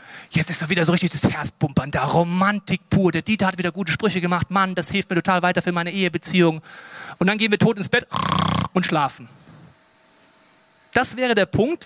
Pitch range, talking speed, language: 165-215 Hz, 205 wpm, German